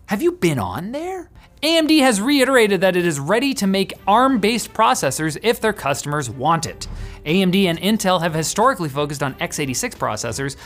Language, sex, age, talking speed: English, male, 30-49, 170 wpm